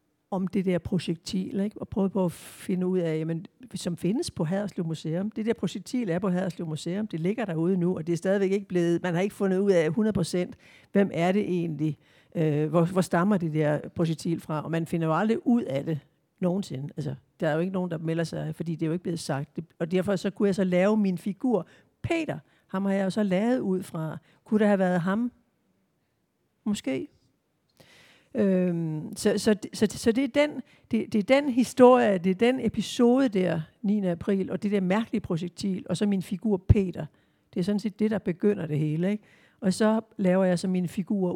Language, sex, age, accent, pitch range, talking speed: Danish, female, 60-79, native, 170-205 Hz, 210 wpm